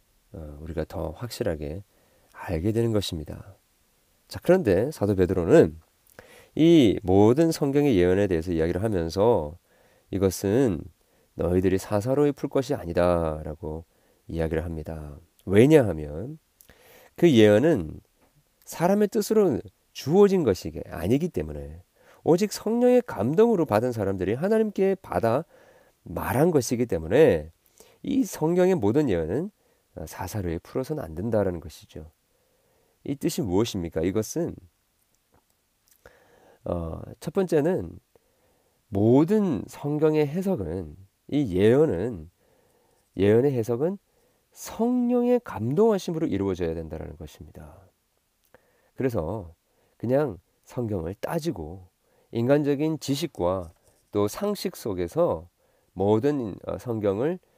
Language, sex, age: Korean, male, 40-59